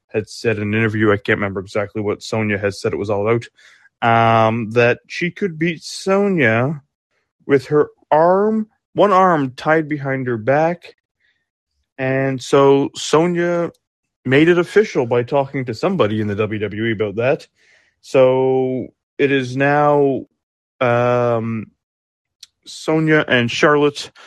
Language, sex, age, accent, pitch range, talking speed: English, male, 30-49, American, 115-145 Hz, 135 wpm